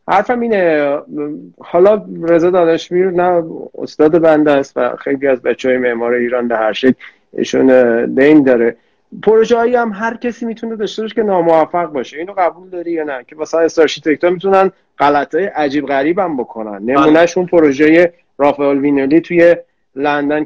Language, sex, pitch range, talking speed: Persian, male, 140-185 Hz, 160 wpm